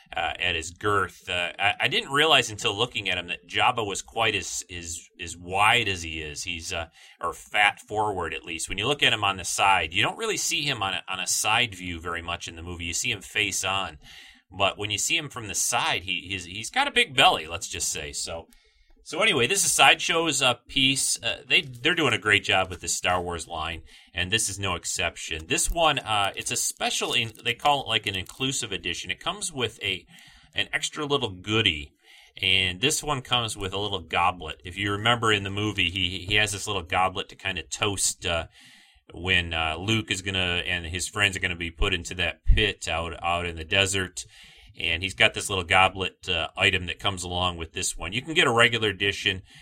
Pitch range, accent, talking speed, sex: 90-120 Hz, American, 235 wpm, male